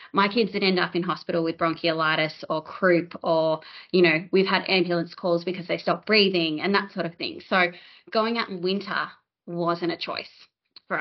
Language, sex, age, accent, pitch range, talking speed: English, female, 20-39, Australian, 170-200 Hz, 195 wpm